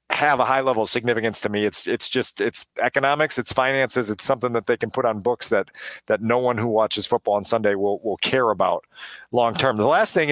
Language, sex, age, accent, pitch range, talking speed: English, male, 40-59, American, 115-135 Hz, 235 wpm